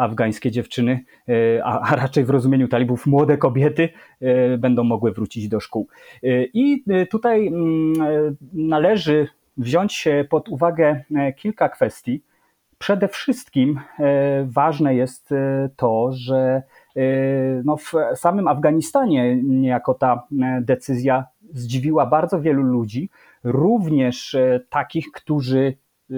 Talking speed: 95 wpm